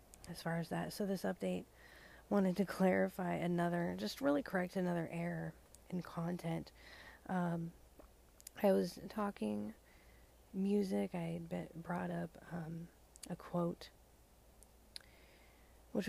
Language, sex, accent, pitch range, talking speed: English, female, American, 160-180 Hz, 110 wpm